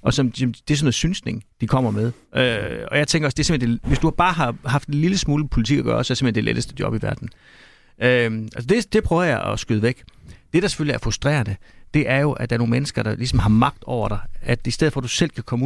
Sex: male